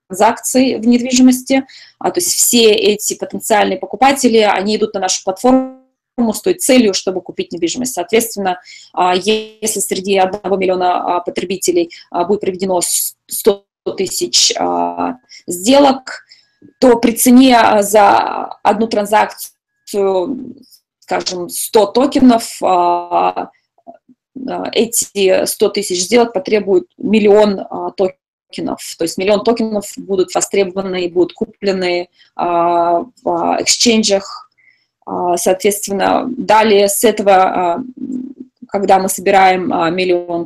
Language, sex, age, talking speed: Russian, female, 20-39, 100 wpm